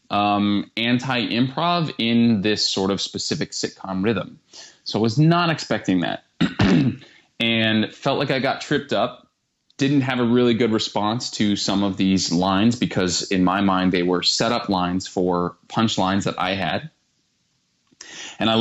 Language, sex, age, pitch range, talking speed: English, male, 20-39, 95-115 Hz, 160 wpm